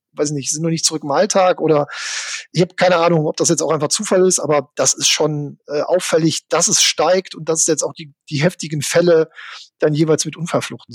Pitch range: 145-165 Hz